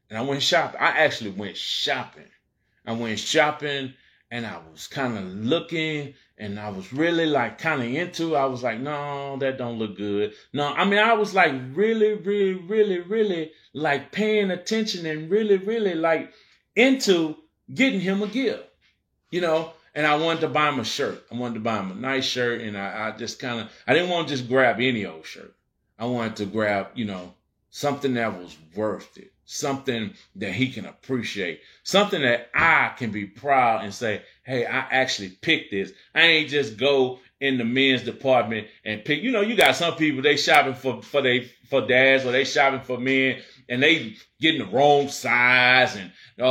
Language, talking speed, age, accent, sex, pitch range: English, 195 wpm, 30-49, American, male, 120-160 Hz